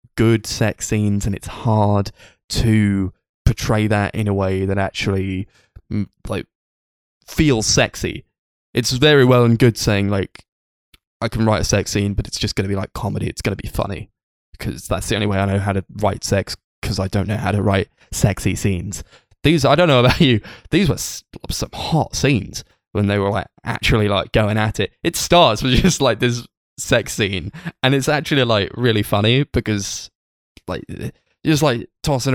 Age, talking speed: 20-39, 190 wpm